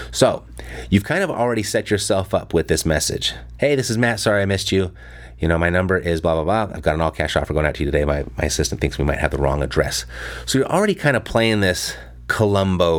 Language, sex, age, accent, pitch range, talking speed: English, male, 30-49, American, 70-105 Hz, 260 wpm